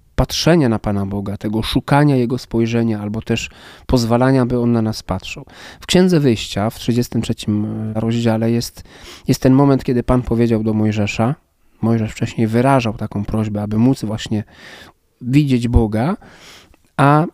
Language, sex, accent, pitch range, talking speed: Polish, male, native, 110-130 Hz, 145 wpm